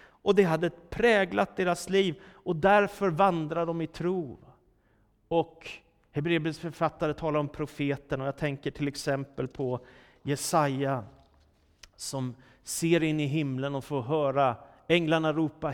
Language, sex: Swedish, male